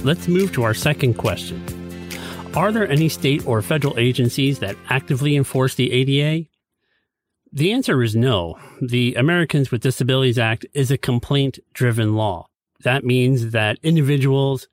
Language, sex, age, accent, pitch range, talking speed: English, male, 40-59, American, 110-140 Hz, 145 wpm